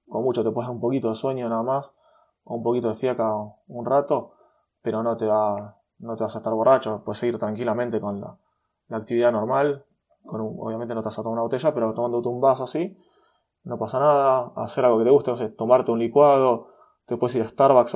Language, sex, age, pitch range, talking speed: Spanish, male, 20-39, 115-140 Hz, 225 wpm